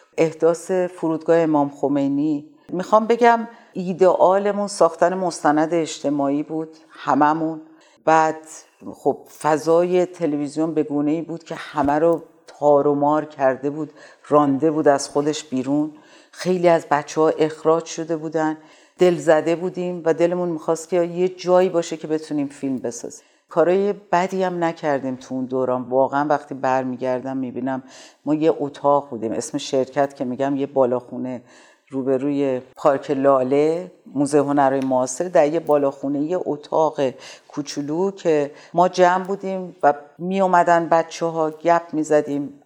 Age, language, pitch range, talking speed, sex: 50-69, Persian, 145-175 Hz, 135 wpm, female